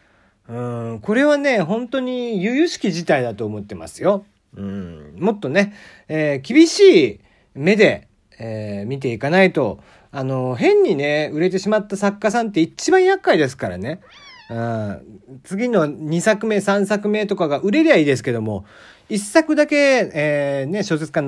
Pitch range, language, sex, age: 135-215 Hz, Japanese, male, 40-59